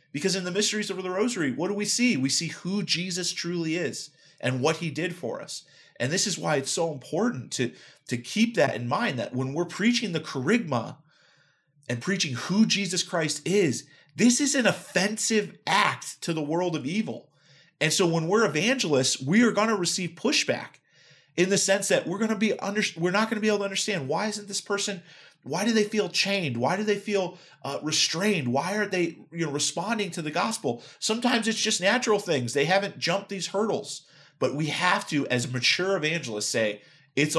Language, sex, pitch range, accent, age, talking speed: English, male, 135-200 Hz, American, 30-49, 205 wpm